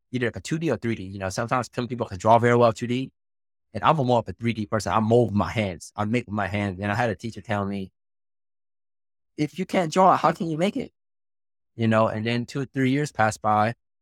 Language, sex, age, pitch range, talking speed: English, male, 20-39, 95-120 Hz, 250 wpm